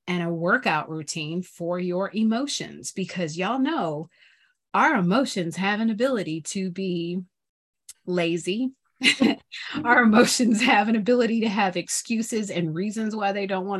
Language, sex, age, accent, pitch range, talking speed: English, female, 30-49, American, 170-200 Hz, 140 wpm